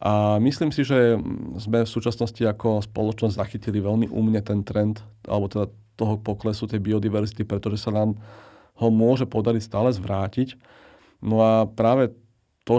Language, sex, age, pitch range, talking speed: Slovak, male, 40-59, 100-115 Hz, 150 wpm